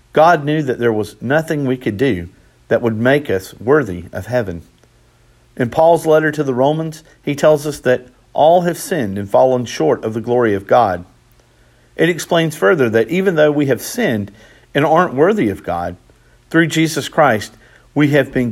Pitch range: 95-150 Hz